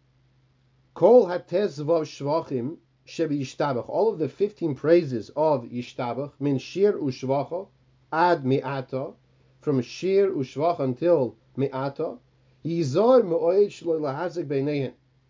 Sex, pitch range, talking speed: male, 130-160 Hz, 70 wpm